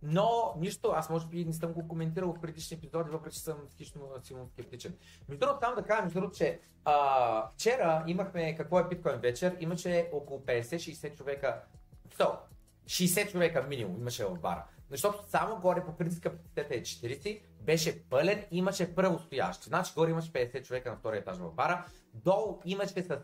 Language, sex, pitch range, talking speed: Bulgarian, male, 120-170 Hz, 170 wpm